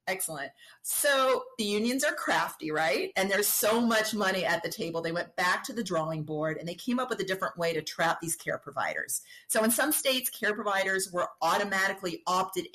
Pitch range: 165-220 Hz